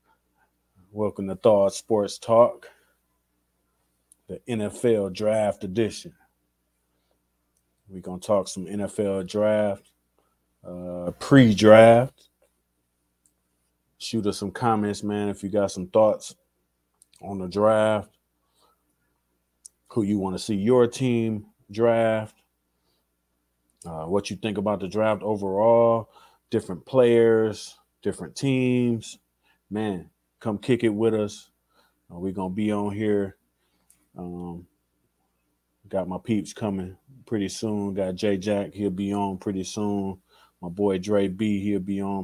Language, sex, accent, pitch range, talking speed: English, male, American, 85-105 Hz, 120 wpm